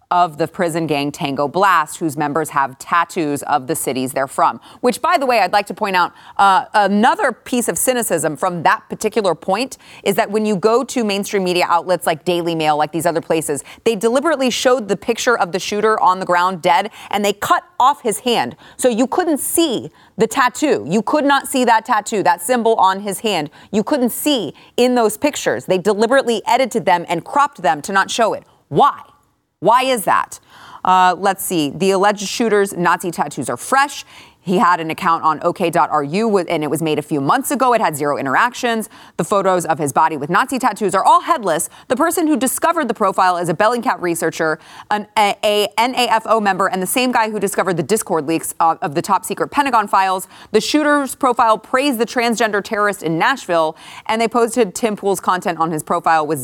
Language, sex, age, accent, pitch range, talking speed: English, female, 30-49, American, 165-235 Hz, 205 wpm